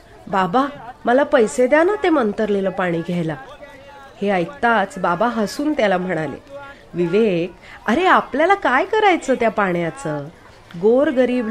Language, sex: Marathi, female